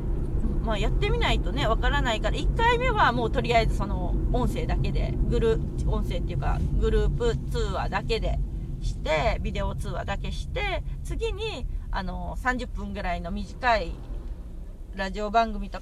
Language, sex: Japanese, female